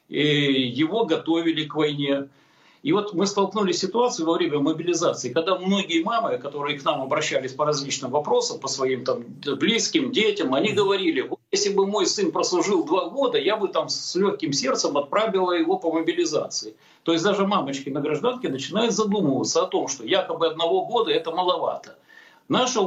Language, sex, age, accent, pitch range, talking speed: Russian, male, 50-69, native, 160-215 Hz, 165 wpm